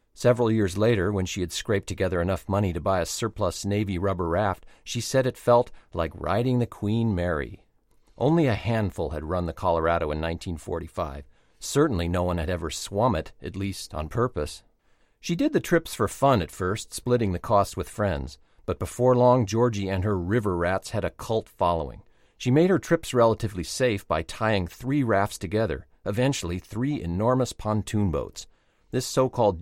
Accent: American